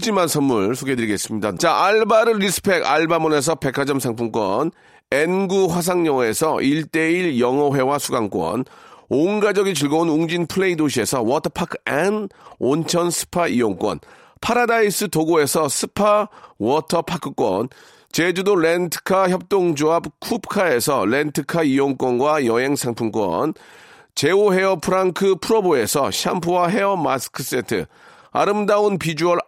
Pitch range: 150-195 Hz